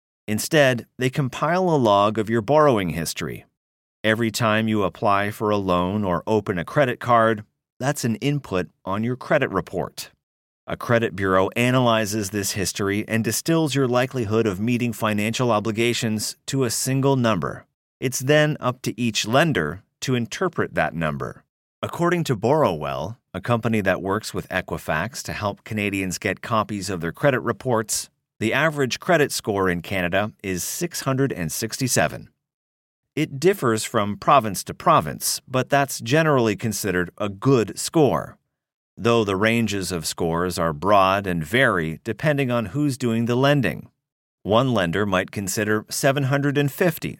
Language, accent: English, American